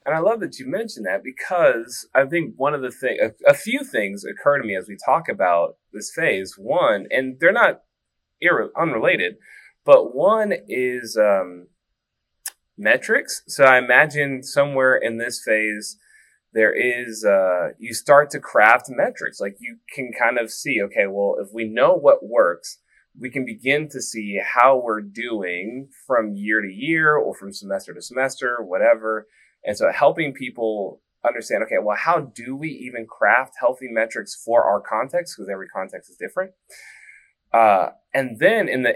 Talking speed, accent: 170 wpm, American